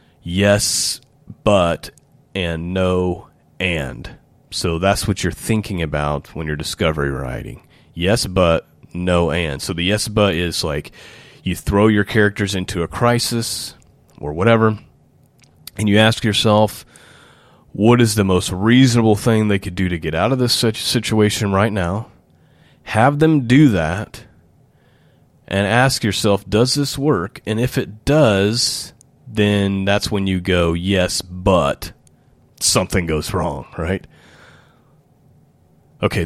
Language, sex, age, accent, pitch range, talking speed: English, male, 30-49, American, 95-125 Hz, 135 wpm